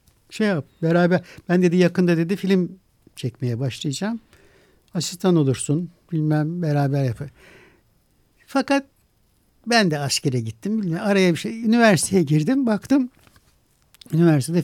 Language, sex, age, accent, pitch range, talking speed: Turkish, male, 60-79, native, 135-195 Hz, 115 wpm